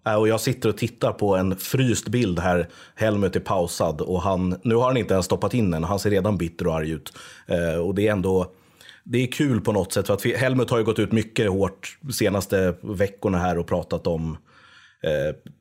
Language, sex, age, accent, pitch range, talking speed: English, male, 30-49, Swedish, 85-105 Hz, 225 wpm